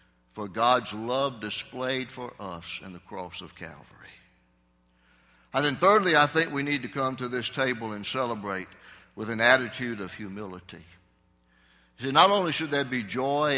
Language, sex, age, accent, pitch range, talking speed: English, male, 60-79, American, 90-140 Hz, 165 wpm